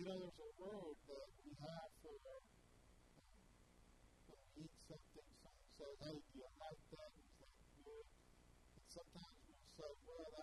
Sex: female